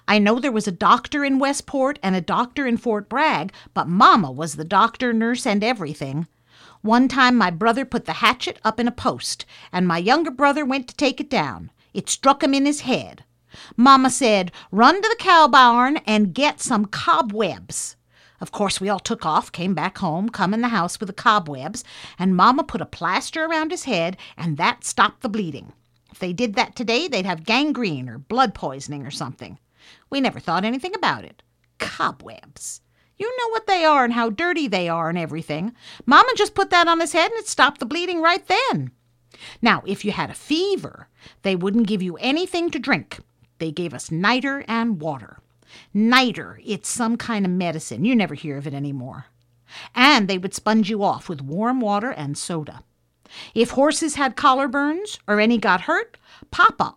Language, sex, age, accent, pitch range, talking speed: English, female, 50-69, American, 175-275 Hz, 195 wpm